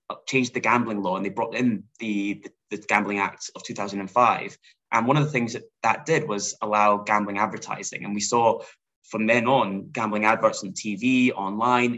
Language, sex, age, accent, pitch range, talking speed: English, male, 10-29, British, 105-130 Hz, 190 wpm